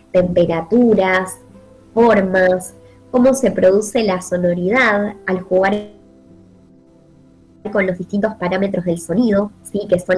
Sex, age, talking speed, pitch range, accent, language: male, 20-39, 105 wpm, 180-215 Hz, Argentinian, Spanish